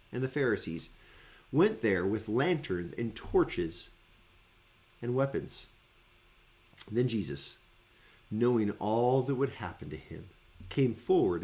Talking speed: 115 wpm